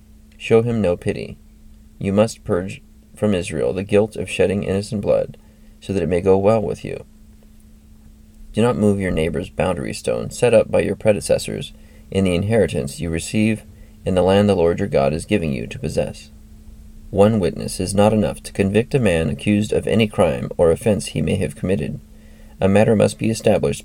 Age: 30-49